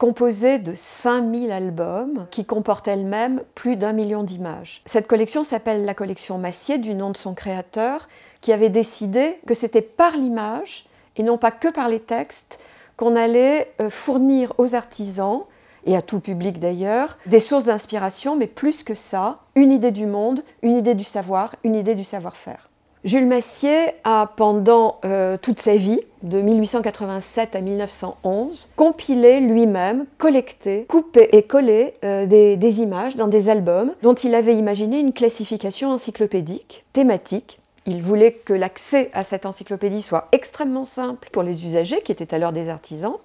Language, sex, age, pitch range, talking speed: French, female, 50-69, 200-250 Hz, 160 wpm